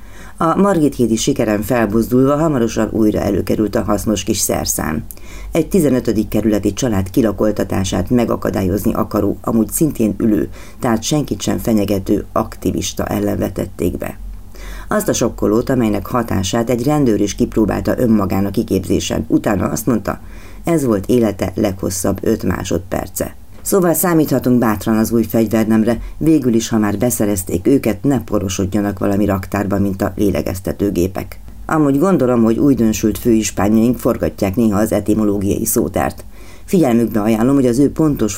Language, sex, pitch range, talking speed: Hungarian, female, 100-120 Hz, 135 wpm